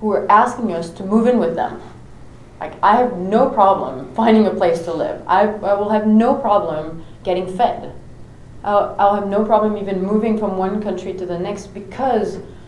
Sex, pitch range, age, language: female, 170-210 Hz, 30-49, English